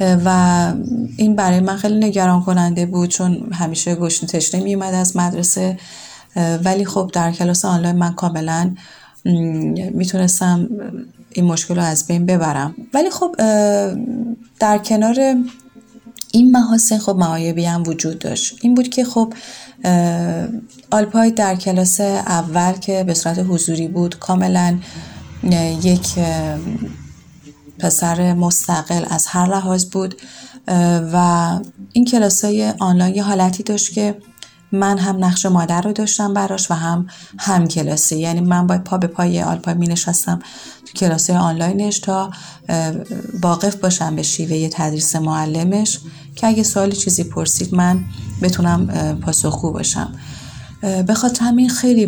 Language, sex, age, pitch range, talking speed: Persian, female, 30-49, 170-205 Hz, 130 wpm